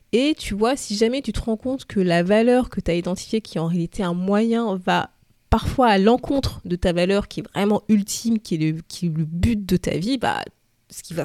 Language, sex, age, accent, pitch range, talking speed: French, female, 20-39, French, 175-230 Hz, 250 wpm